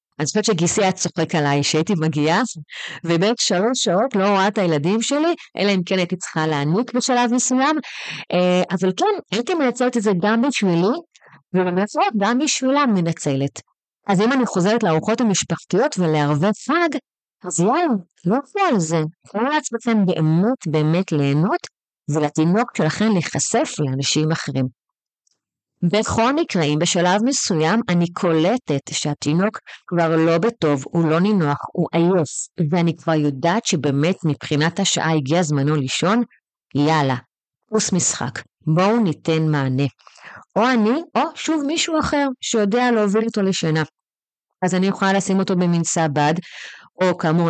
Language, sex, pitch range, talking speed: Hebrew, female, 155-220 Hz, 140 wpm